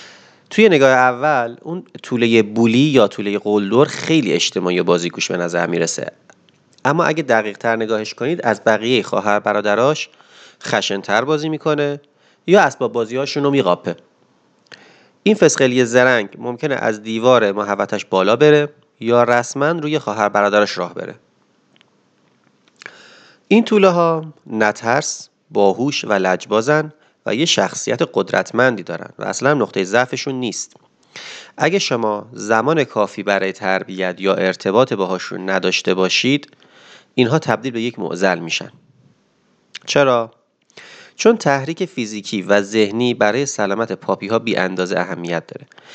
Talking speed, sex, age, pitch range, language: 130 wpm, male, 30-49, 100-145 Hz, Persian